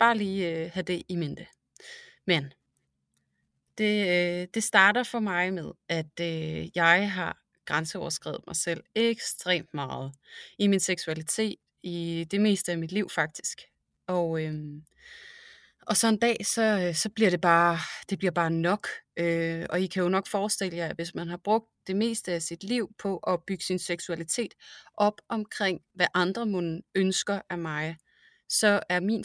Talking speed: 175 wpm